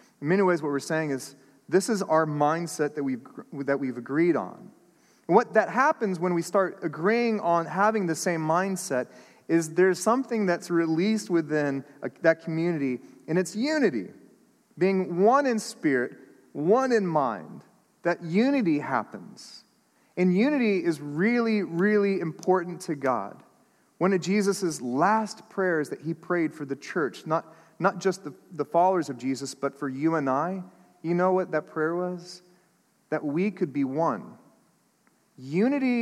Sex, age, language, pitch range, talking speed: male, 30-49, English, 160-210 Hz, 160 wpm